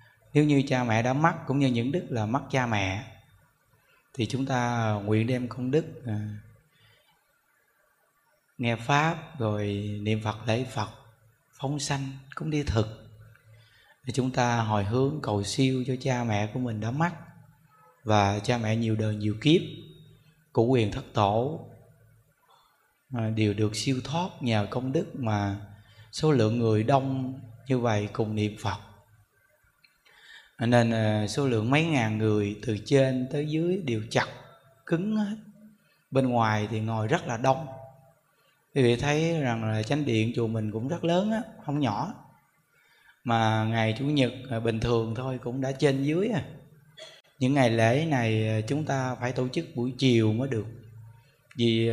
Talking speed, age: 155 wpm, 20-39